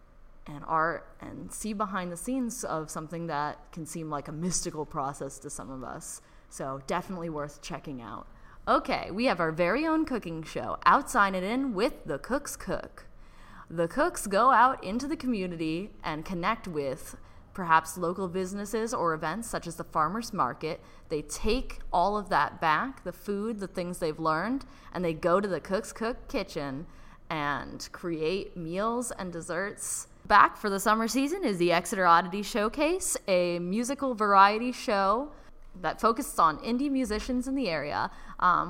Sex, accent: female, American